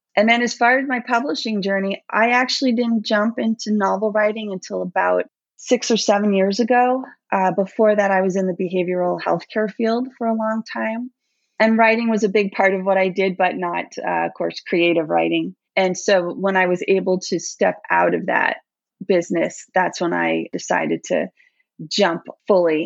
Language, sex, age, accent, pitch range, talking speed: English, female, 30-49, American, 170-215 Hz, 190 wpm